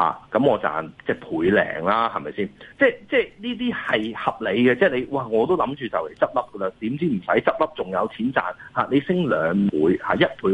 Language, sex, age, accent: Chinese, male, 30-49, native